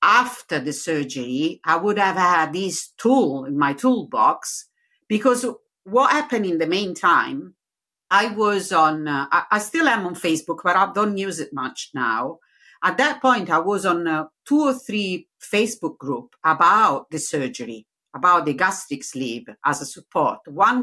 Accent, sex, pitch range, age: Italian, female, 160-220 Hz, 50-69